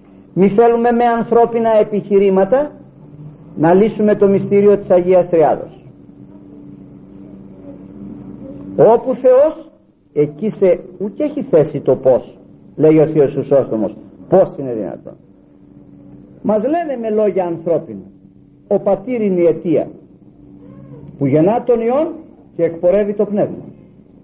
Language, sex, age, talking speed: Greek, male, 50-69, 115 wpm